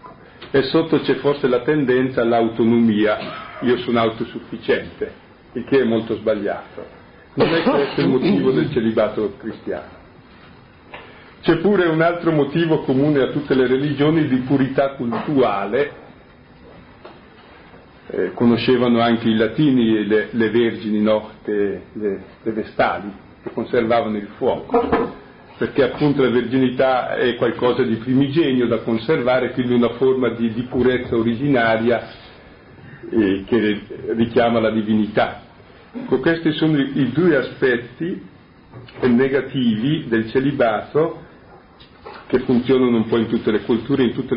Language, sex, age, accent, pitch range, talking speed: Italian, male, 50-69, native, 115-140 Hz, 125 wpm